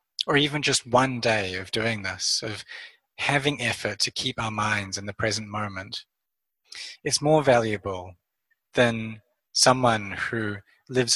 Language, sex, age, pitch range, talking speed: English, male, 20-39, 105-130 Hz, 140 wpm